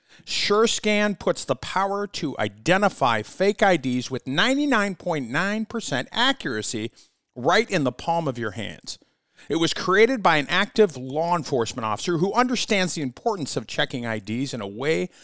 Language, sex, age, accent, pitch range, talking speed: English, male, 50-69, American, 125-200 Hz, 145 wpm